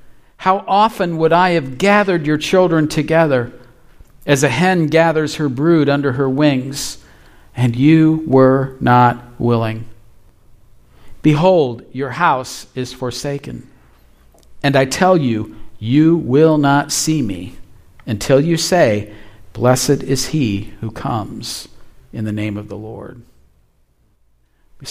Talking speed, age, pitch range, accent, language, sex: 125 wpm, 50-69, 115-155 Hz, American, English, male